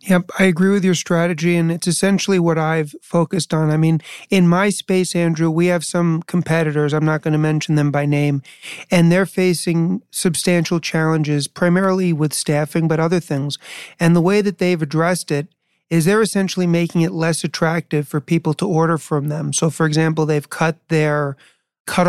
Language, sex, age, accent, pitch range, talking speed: English, male, 40-59, American, 155-175 Hz, 190 wpm